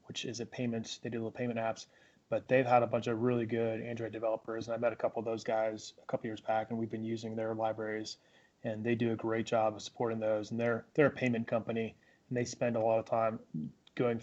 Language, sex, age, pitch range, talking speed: English, male, 20-39, 110-120 Hz, 255 wpm